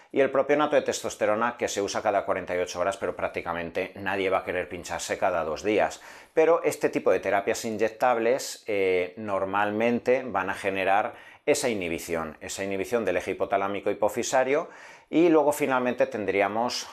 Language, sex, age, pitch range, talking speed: Spanish, male, 40-59, 100-140 Hz, 155 wpm